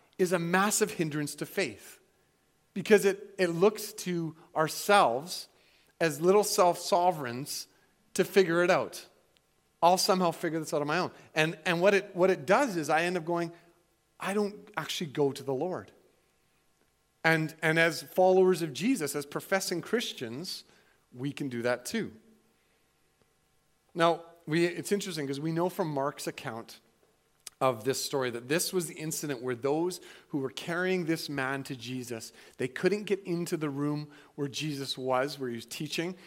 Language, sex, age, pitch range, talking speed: English, male, 40-59, 150-185 Hz, 165 wpm